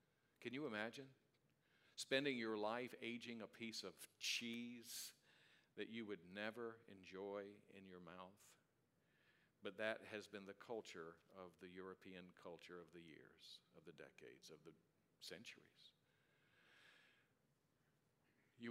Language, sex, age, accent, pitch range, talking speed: English, male, 60-79, American, 95-120 Hz, 125 wpm